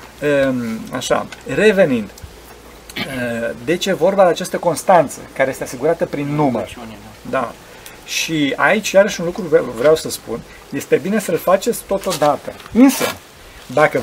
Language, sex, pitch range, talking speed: Romanian, male, 145-210 Hz, 130 wpm